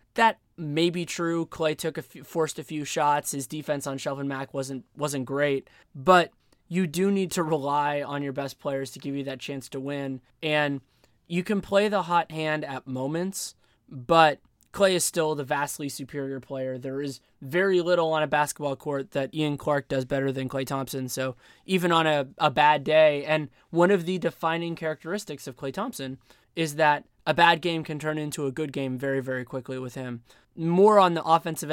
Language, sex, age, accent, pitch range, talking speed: English, male, 20-39, American, 140-170 Hz, 200 wpm